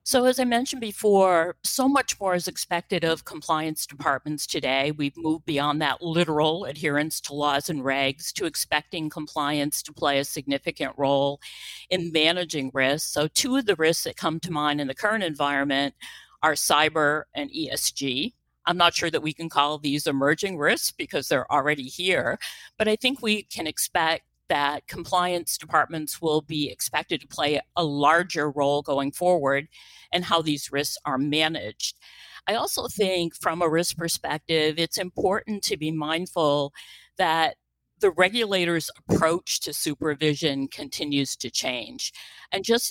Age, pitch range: 50-69, 145-185 Hz